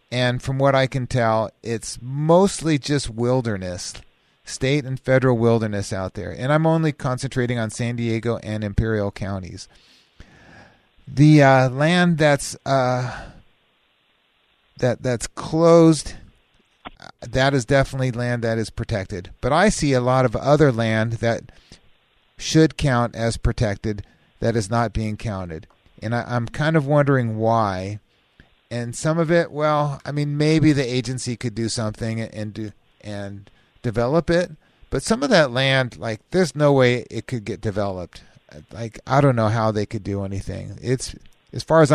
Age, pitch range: 40-59, 110-135 Hz